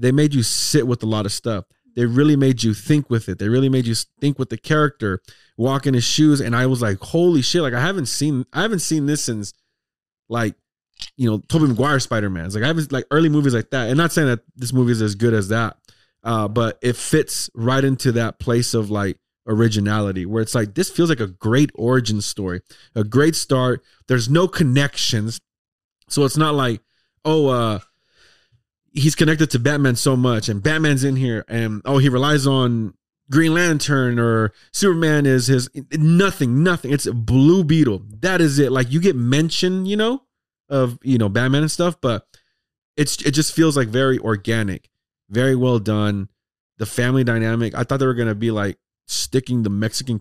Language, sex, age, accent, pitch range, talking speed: English, male, 30-49, American, 110-145 Hz, 200 wpm